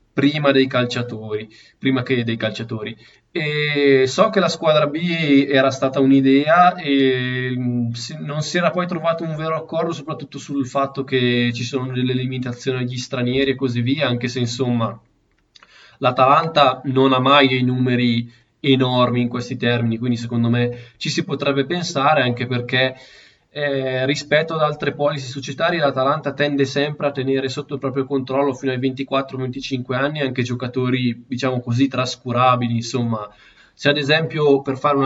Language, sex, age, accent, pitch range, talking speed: Italian, male, 20-39, native, 120-140 Hz, 155 wpm